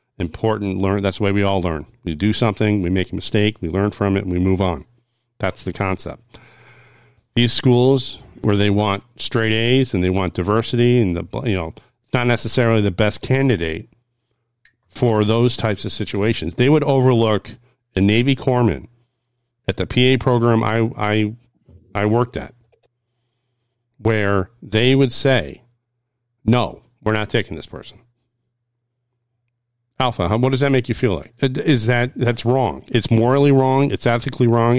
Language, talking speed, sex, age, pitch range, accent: English, 160 wpm, male, 50-69, 105-120 Hz, American